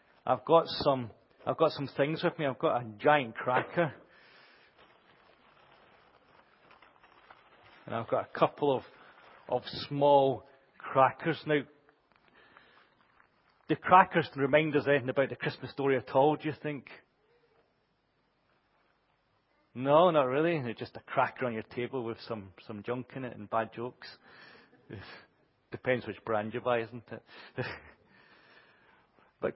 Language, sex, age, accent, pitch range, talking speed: English, male, 40-59, British, 120-150 Hz, 135 wpm